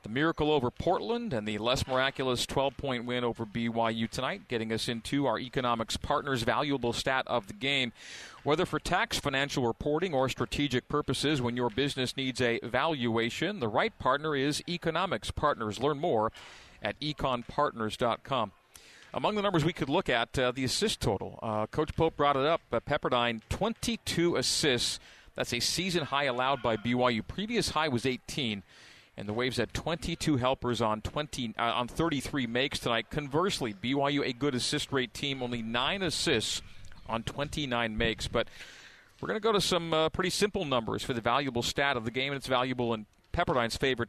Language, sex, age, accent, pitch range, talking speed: English, male, 40-59, American, 115-150 Hz, 175 wpm